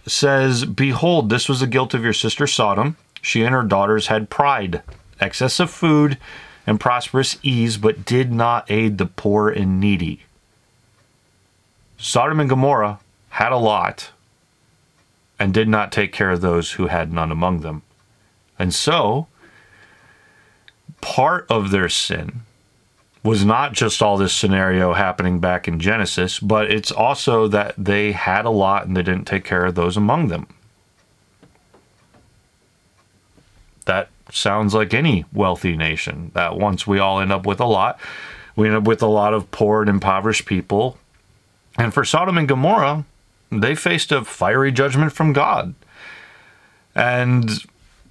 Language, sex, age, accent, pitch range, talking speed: English, male, 30-49, American, 95-125 Hz, 150 wpm